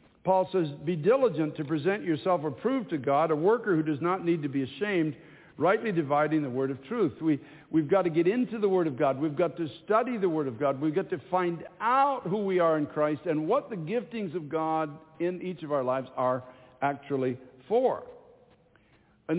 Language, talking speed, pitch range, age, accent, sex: English, 210 wpm, 145-190 Hz, 60-79, American, male